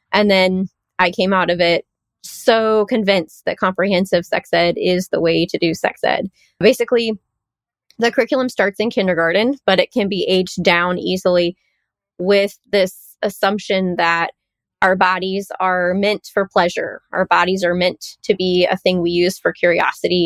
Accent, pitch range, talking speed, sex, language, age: American, 180-215 Hz, 165 wpm, female, English, 20-39